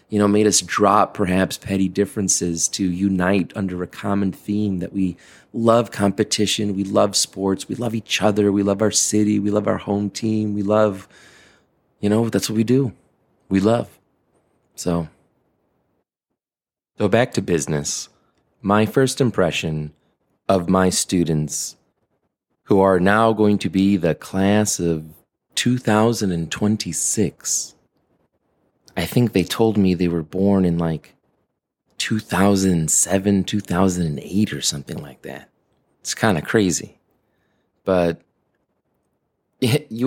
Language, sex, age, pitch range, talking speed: English, male, 30-49, 95-120 Hz, 130 wpm